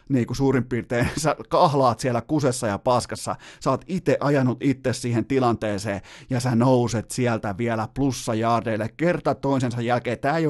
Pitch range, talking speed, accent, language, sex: 115-145 Hz, 165 wpm, native, Finnish, male